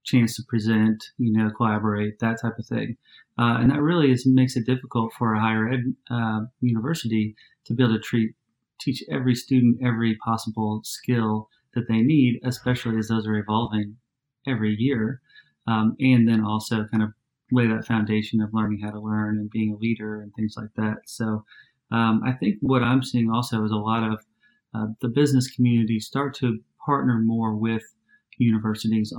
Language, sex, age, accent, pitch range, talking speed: English, male, 30-49, American, 110-120 Hz, 185 wpm